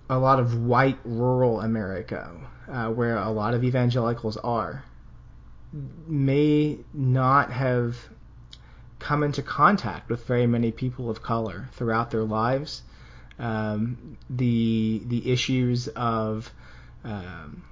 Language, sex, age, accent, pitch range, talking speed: English, male, 20-39, American, 115-135 Hz, 115 wpm